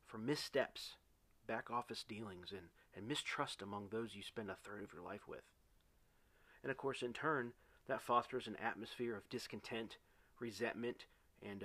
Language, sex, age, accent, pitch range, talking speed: English, male, 40-59, American, 110-145 Hz, 160 wpm